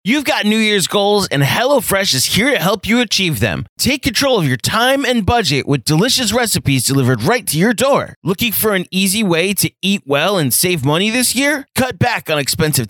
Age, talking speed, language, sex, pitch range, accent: 20-39, 215 wpm, English, male, 140-210 Hz, American